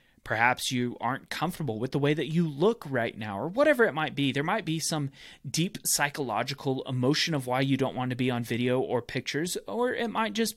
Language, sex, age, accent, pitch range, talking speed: English, male, 30-49, American, 125-160 Hz, 220 wpm